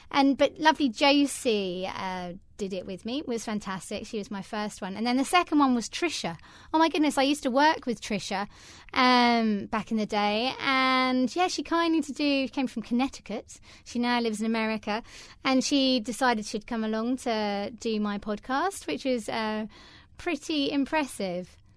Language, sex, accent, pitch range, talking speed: English, female, British, 210-275 Hz, 185 wpm